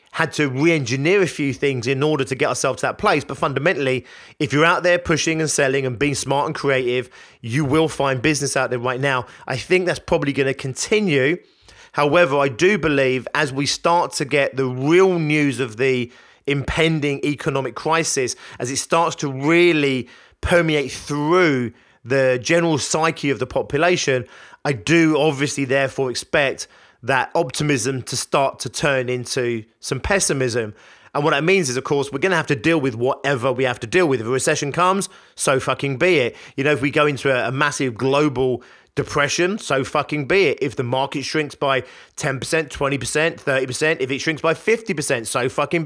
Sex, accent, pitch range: male, British, 130-160 Hz